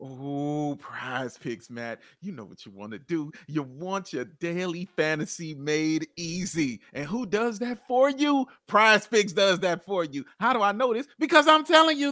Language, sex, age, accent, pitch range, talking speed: English, male, 30-49, American, 150-220 Hz, 195 wpm